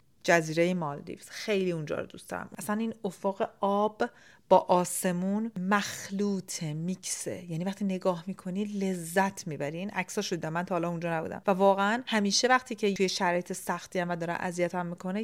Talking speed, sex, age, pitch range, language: 160 wpm, female, 40-59, 175-230 Hz, Persian